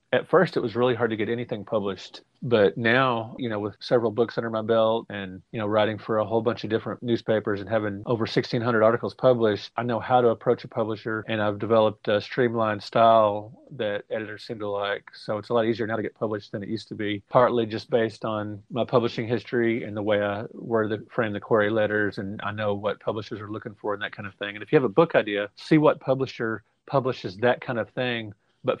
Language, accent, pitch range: English, American, 105-125 Hz